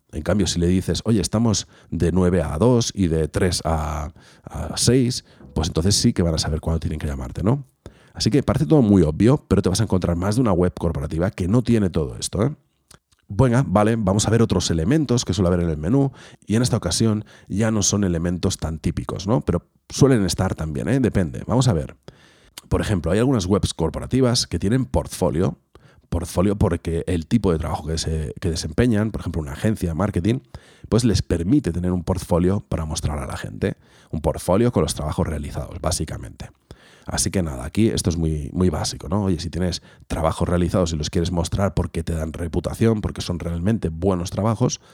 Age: 40-59